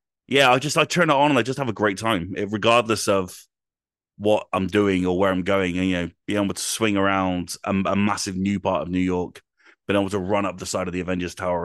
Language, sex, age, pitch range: English, male, 30-49, 90-105 Hz